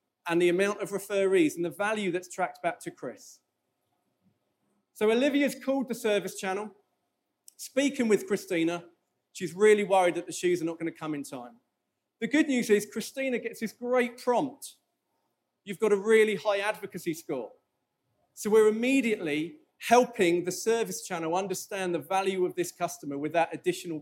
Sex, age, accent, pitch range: male, 40-59, British, 175-225 Hz